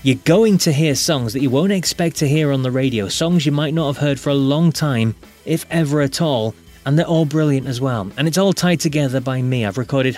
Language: English